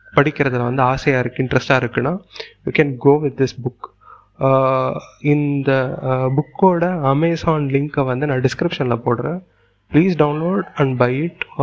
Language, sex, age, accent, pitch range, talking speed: Tamil, male, 30-49, native, 125-150 Hz, 125 wpm